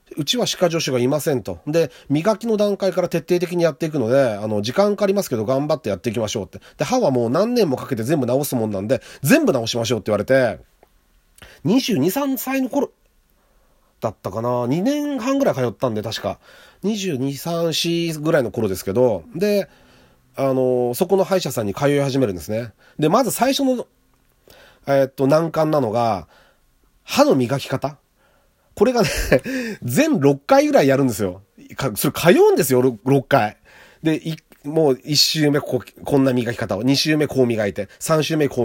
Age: 40-59